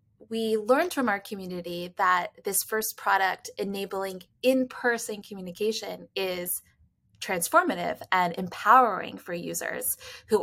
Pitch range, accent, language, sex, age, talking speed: 180-215 Hz, American, English, female, 20-39, 110 wpm